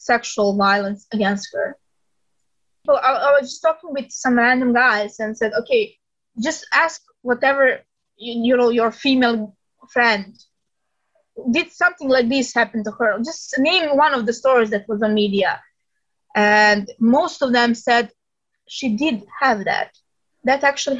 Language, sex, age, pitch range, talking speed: German, female, 20-39, 230-300 Hz, 155 wpm